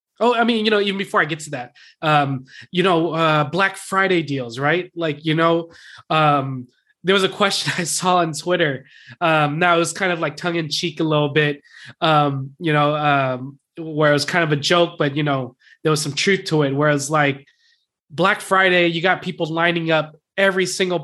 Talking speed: 215 wpm